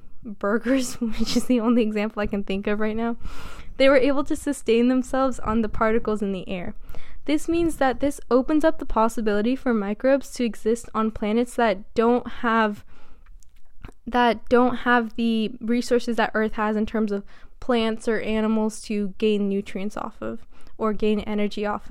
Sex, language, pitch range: female, English, 210-255 Hz